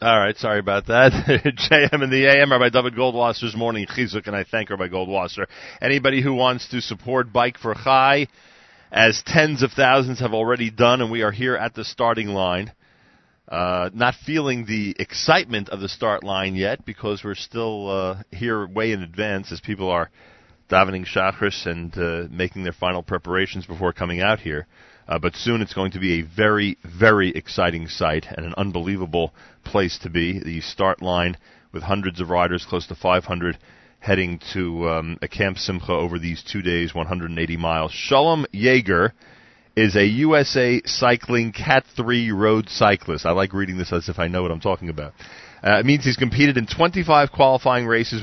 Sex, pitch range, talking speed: male, 90-120 Hz, 185 wpm